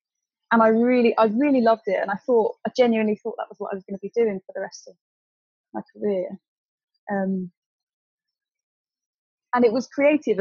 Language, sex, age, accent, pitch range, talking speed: English, female, 20-39, British, 200-250 Hz, 190 wpm